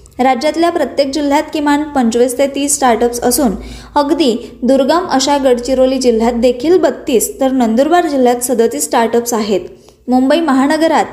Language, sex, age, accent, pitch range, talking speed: Marathi, female, 20-39, native, 240-295 Hz, 130 wpm